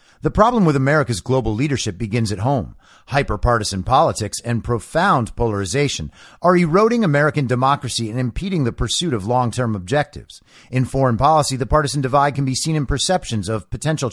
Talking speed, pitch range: 165 wpm, 120-150 Hz